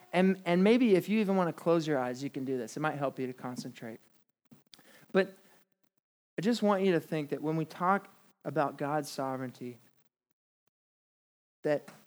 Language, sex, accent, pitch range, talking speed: English, male, American, 135-180 Hz, 180 wpm